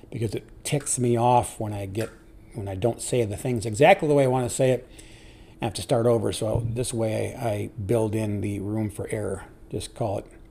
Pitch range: 110-120 Hz